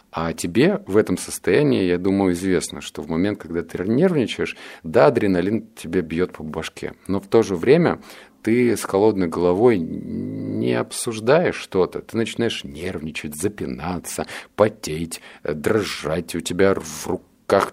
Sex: male